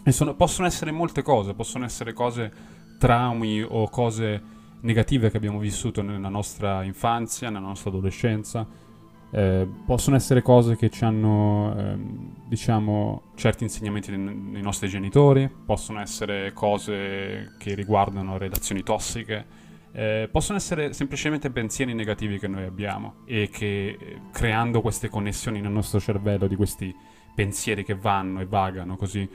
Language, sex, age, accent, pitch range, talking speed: Italian, male, 20-39, native, 100-115 Hz, 140 wpm